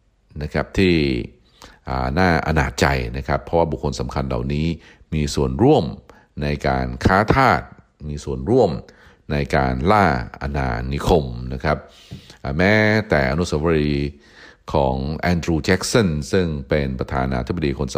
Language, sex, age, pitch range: Thai, male, 60-79, 65-85 Hz